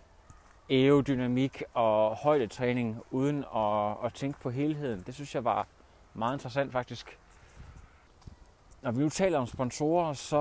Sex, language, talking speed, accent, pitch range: male, Danish, 140 wpm, native, 105-170 Hz